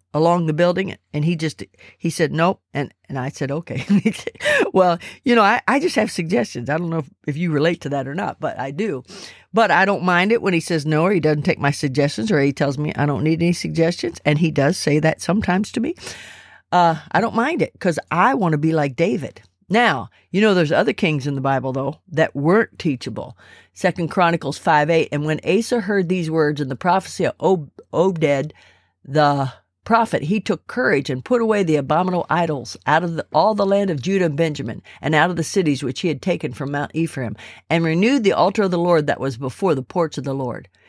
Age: 50-69